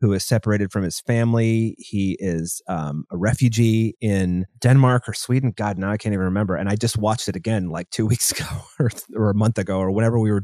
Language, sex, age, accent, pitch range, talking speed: English, male, 30-49, American, 95-115 Hz, 230 wpm